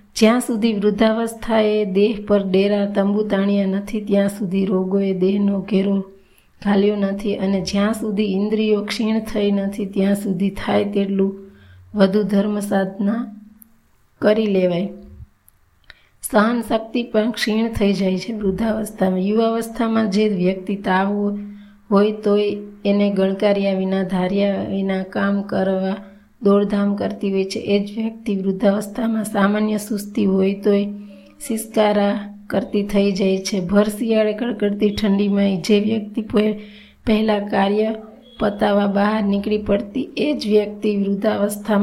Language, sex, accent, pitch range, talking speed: Gujarati, female, native, 200-215 Hz, 105 wpm